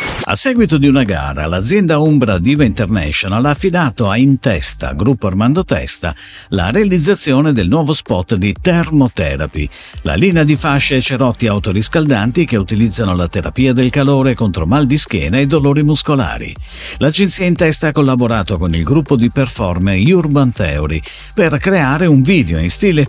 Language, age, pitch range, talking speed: Italian, 50-69, 95-155 Hz, 160 wpm